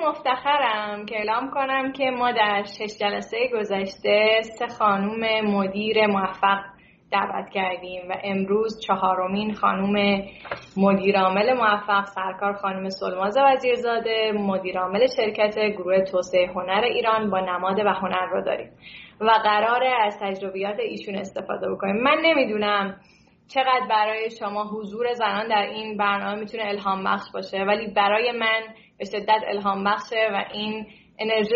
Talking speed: 130 wpm